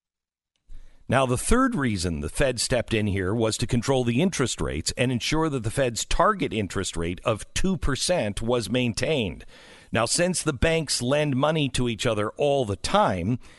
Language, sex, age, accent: English, male, 50-69, American